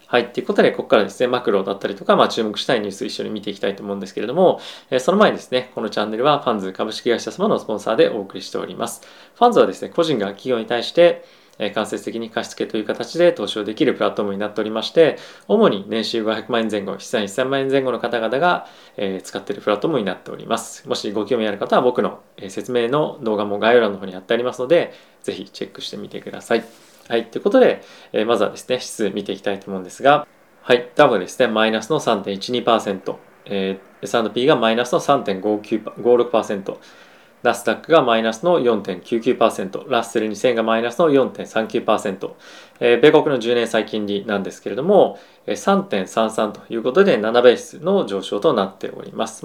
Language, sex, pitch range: Japanese, male, 105-130 Hz